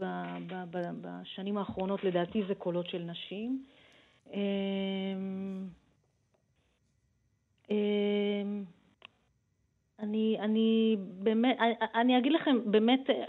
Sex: female